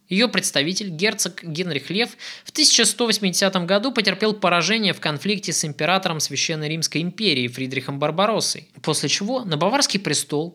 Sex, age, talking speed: male, 20-39, 135 wpm